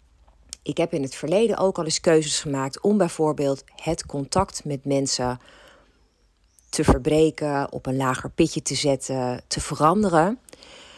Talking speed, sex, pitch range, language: 140 wpm, female, 140-190 Hz, Dutch